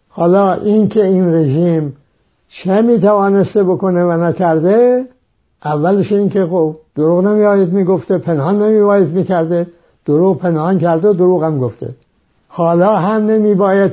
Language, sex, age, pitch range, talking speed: English, male, 60-79, 165-195 Hz, 135 wpm